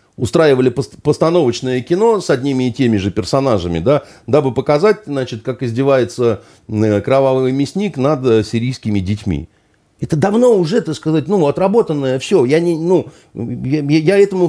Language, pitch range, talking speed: Russian, 100-155 Hz, 140 wpm